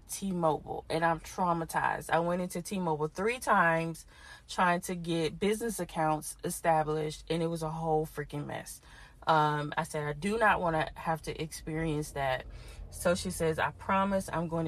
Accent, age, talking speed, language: American, 20-39, 170 wpm, English